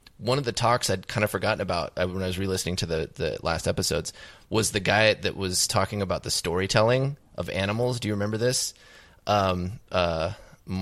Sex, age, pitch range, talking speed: male, 20-39, 90-110 Hz, 190 wpm